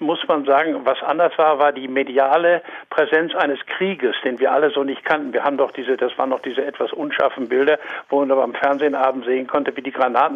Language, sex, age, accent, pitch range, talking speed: German, male, 60-79, German, 135-185 Hz, 220 wpm